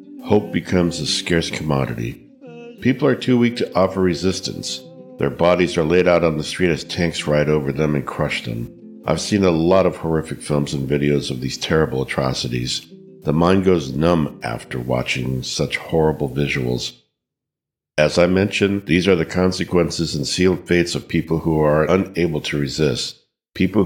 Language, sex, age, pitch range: English, male, 60-79, 75-95 Hz